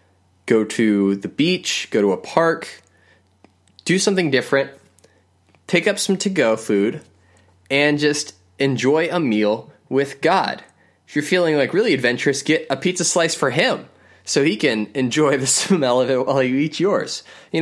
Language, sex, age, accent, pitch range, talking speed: English, male, 20-39, American, 110-170 Hz, 165 wpm